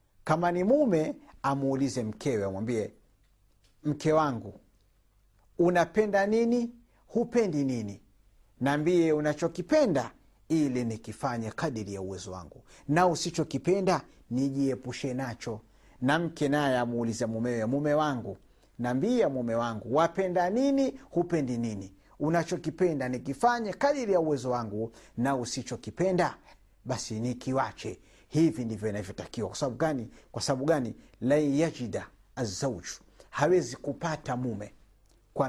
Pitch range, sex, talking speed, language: 115-160 Hz, male, 110 wpm, Swahili